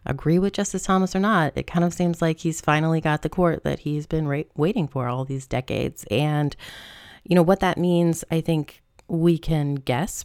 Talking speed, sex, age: 205 wpm, female, 30-49